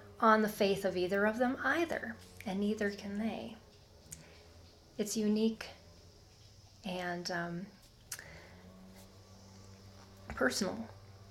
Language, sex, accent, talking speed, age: English, female, American, 90 wpm, 40-59